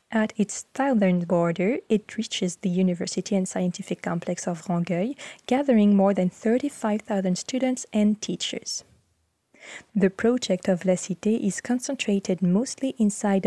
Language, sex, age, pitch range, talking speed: French, female, 20-39, 185-230 Hz, 130 wpm